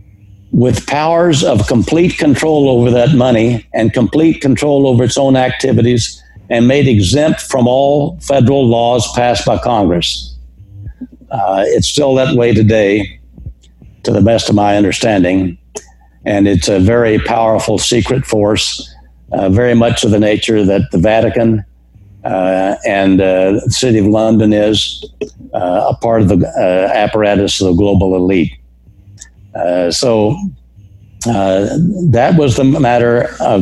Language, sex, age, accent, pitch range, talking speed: English, male, 60-79, American, 100-120 Hz, 145 wpm